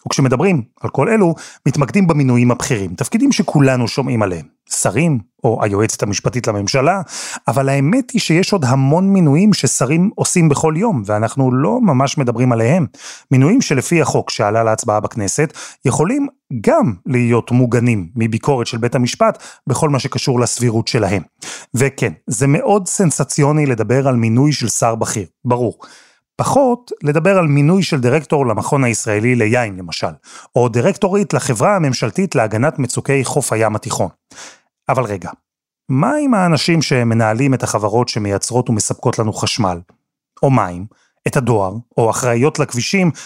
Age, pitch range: 30-49, 120-160 Hz